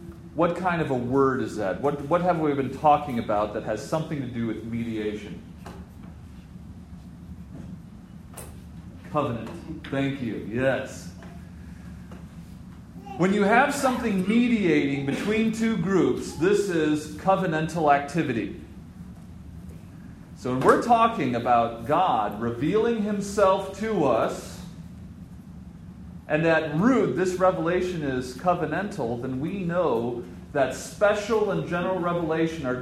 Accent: American